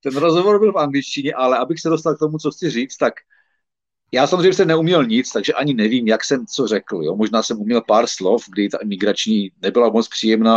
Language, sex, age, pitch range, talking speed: Czech, male, 40-59, 120-185 Hz, 215 wpm